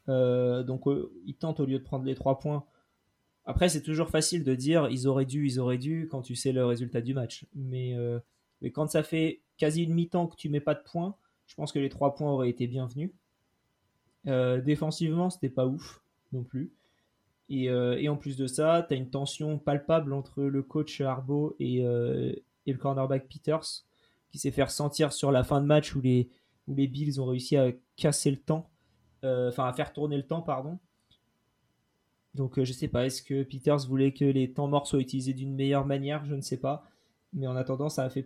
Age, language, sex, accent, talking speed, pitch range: 20-39, French, male, French, 220 wpm, 130-150 Hz